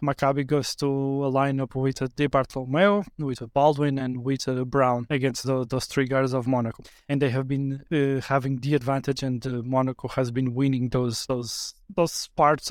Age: 20-39